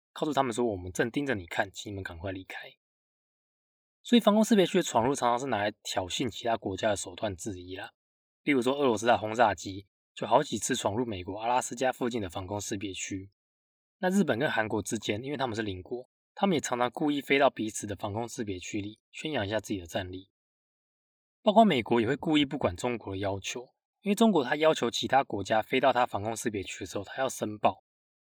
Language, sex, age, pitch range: Chinese, male, 20-39, 100-140 Hz